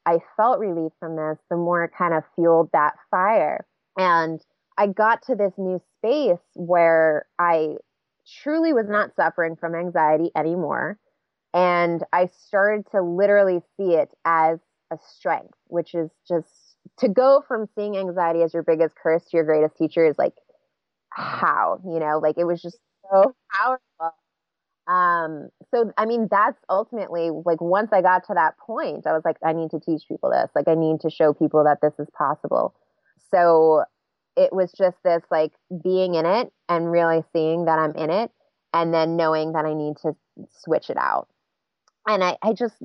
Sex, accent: female, American